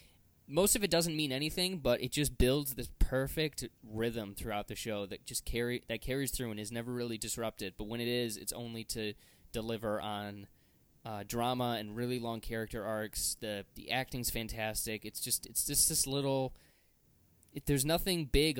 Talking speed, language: 185 wpm, English